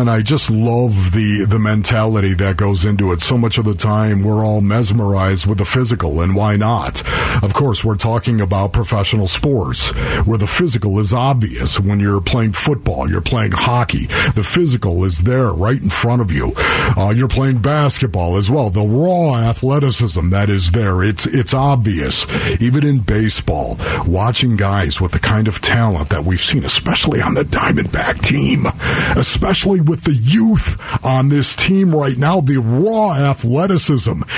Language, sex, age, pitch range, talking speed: English, male, 50-69, 100-135 Hz, 175 wpm